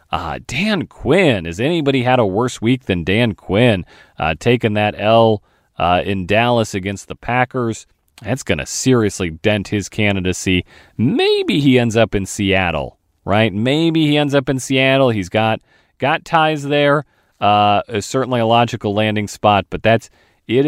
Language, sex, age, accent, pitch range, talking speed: English, male, 40-59, American, 105-160 Hz, 165 wpm